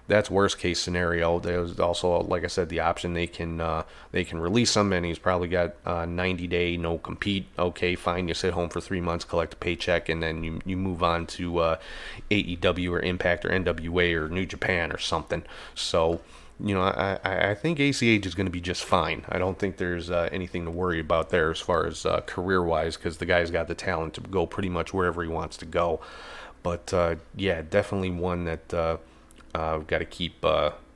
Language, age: English, 30-49